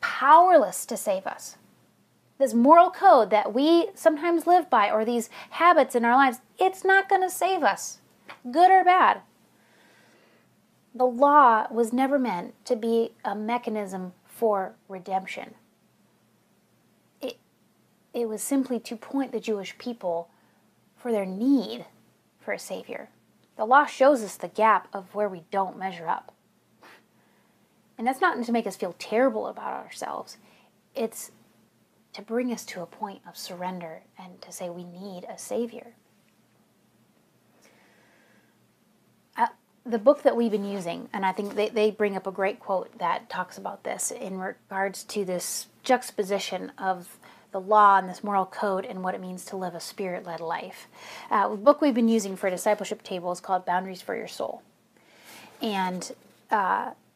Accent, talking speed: American, 155 wpm